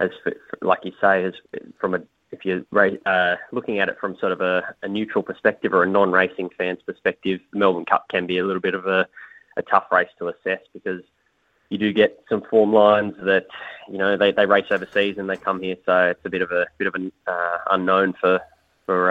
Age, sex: 20-39, male